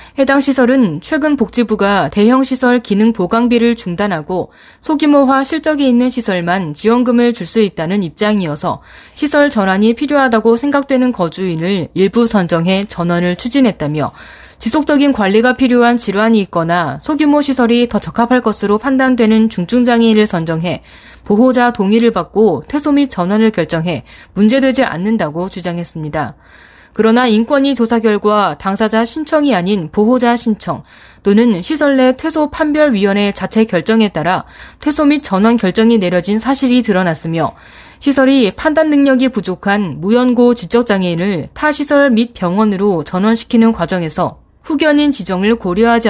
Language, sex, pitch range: Korean, female, 190-255 Hz